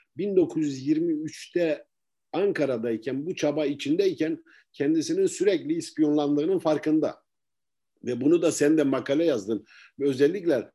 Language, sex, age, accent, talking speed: Turkish, male, 50-69, native, 95 wpm